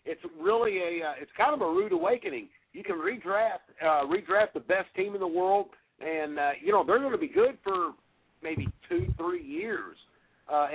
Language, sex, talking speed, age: English, male, 200 wpm, 50-69